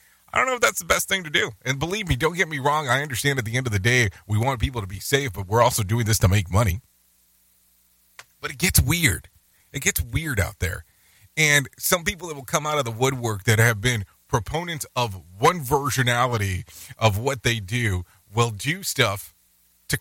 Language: English